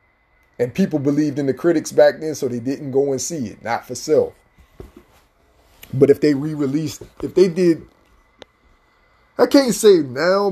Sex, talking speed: male, 170 wpm